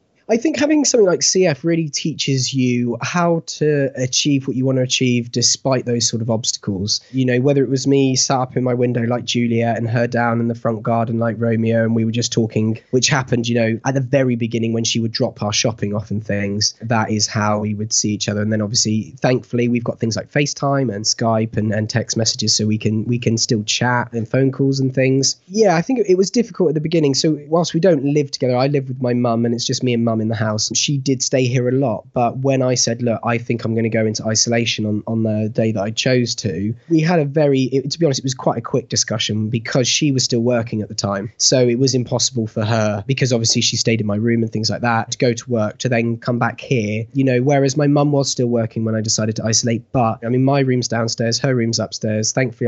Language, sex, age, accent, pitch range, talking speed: English, male, 20-39, British, 115-135 Hz, 255 wpm